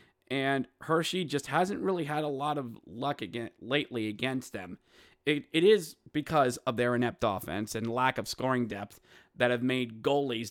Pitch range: 115-145 Hz